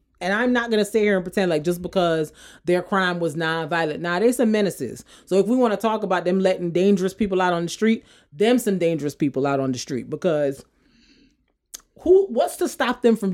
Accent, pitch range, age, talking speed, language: American, 150-200 Hz, 30-49, 225 wpm, English